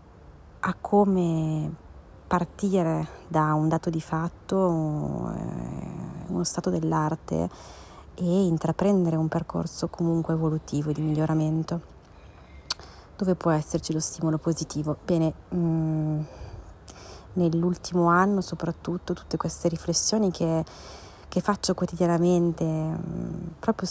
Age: 30-49